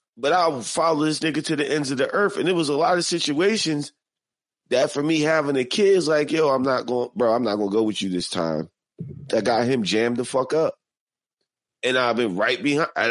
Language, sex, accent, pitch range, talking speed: English, male, American, 120-150 Hz, 240 wpm